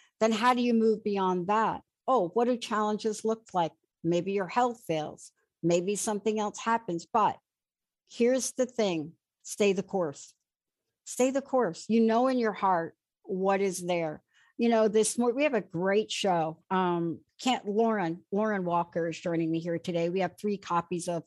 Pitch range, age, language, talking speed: 175-230 Hz, 60-79, English, 180 wpm